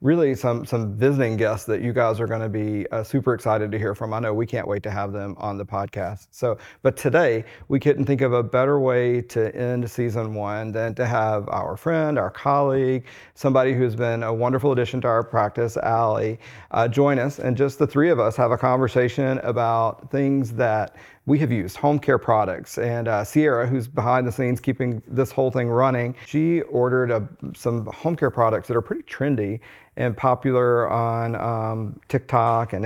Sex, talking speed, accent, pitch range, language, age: male, 200 wpm, American, 115-130 Hz, English, 40-59